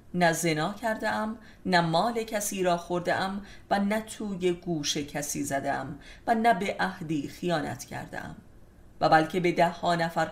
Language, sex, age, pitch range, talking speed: Persian, female, 30-49, 150-195 Hz, 150 wpm